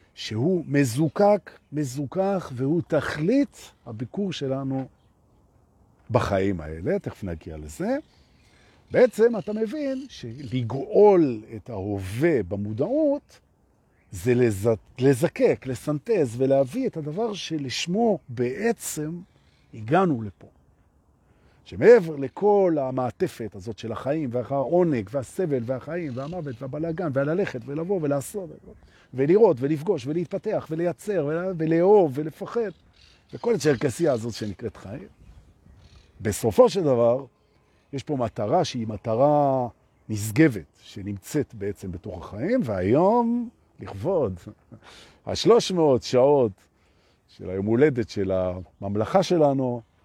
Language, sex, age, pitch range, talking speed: Hebrew, male, 50-69, 105-170 Hz, 95 wpm